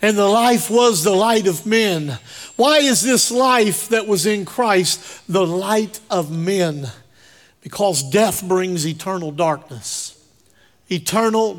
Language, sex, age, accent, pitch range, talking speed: English, male, 50-69, American, 150-215 Hz, 135 wpm